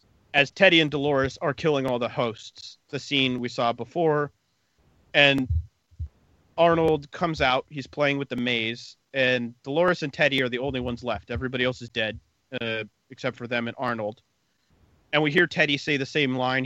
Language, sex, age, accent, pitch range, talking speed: English, male, 30-49, American, 120-150 Hz, 180 wpm